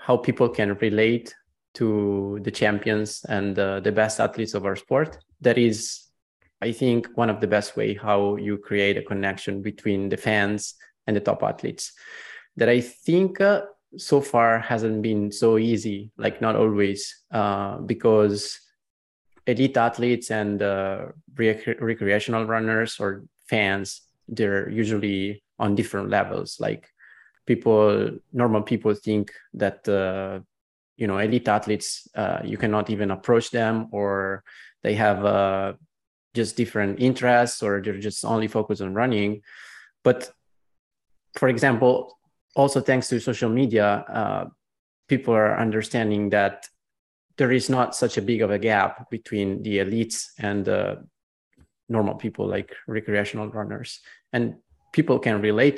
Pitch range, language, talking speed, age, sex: 100-115 Hz, English, 140 wpm, 20-39, male